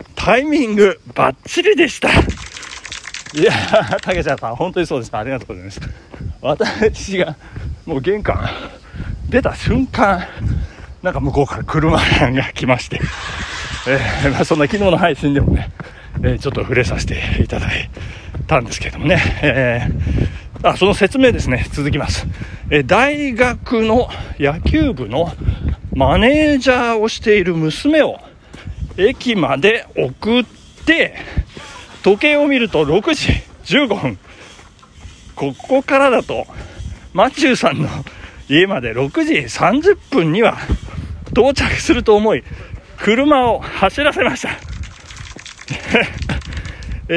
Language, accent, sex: Japanese, native, male